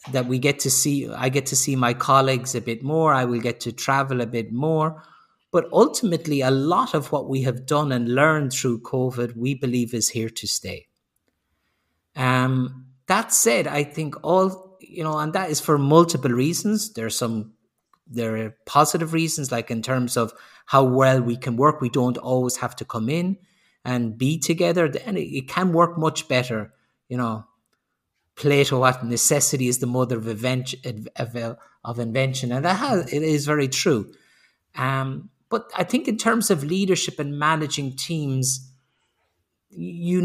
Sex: male